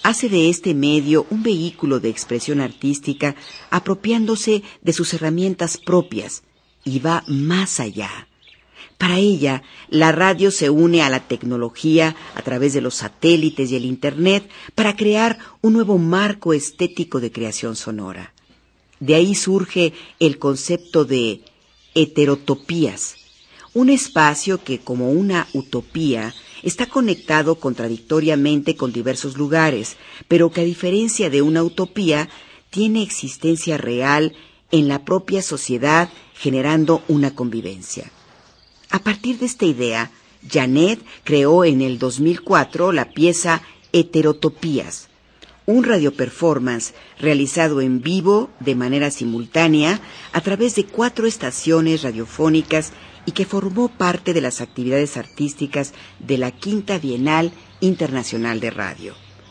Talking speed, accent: 125 wpm, Mexican